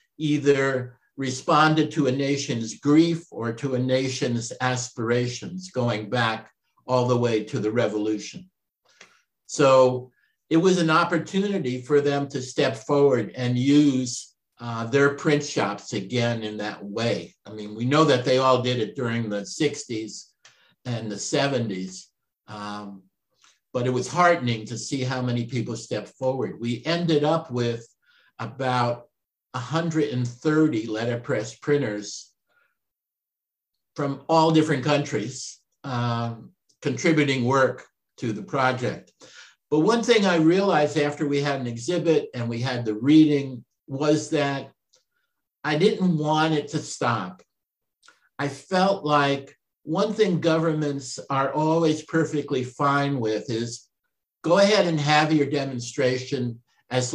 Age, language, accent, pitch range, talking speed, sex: 60-79, English, American, 120-155 Hz, 130 wpm, male